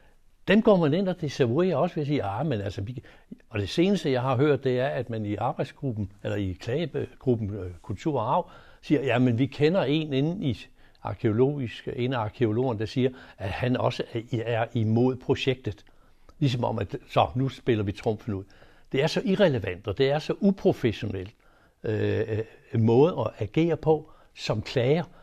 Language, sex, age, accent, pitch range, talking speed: Danish, male, 60-79, native, 115-155 Hz, 180 wpm